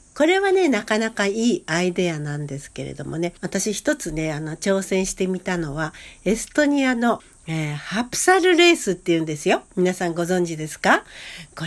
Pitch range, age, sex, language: 160-220 Hz, 60-79, female, Japanese